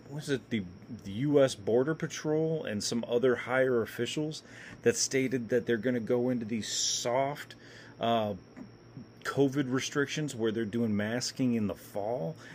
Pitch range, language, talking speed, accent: 115-135 Hz, English, 155 wpm, American